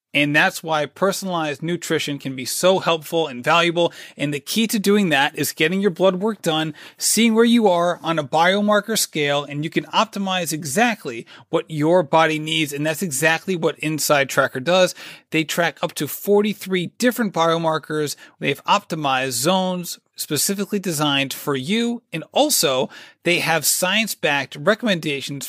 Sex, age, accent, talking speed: male, 30-49, American, 160 wpm